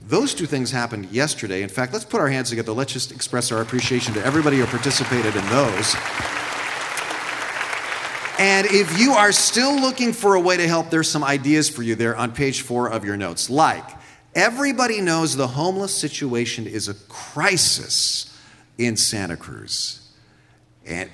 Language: English